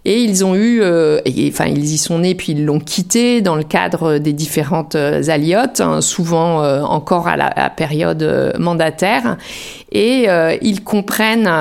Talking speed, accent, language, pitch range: 190 wpm, French, French, 155-200 Hz